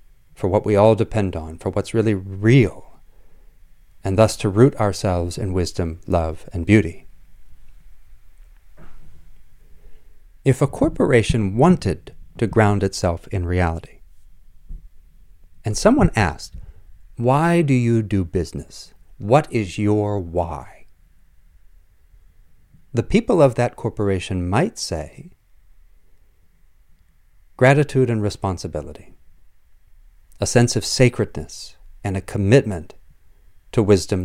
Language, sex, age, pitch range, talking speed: English, male, 40-59, 85-110 Hz, 105 wpm